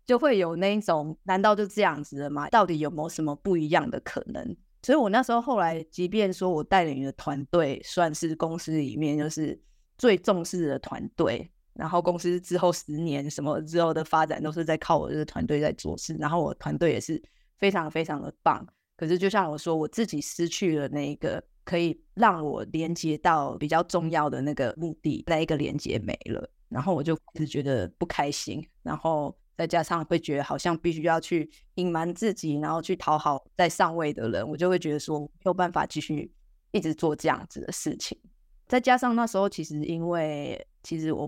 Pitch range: 150-180 Hz